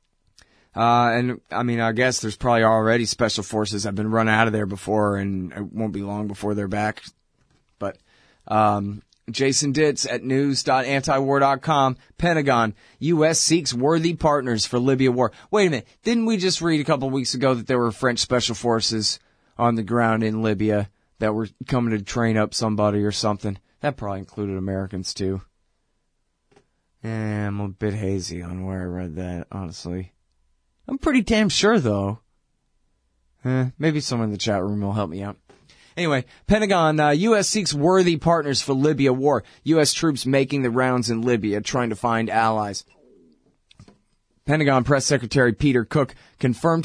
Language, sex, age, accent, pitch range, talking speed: English, male, 20-39, American, 105-135 Hz, 170 wpm